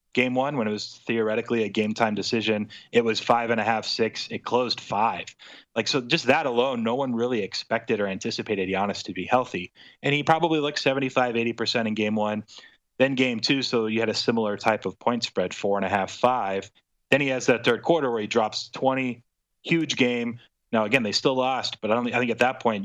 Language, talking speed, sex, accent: English, 225 wpm, male, American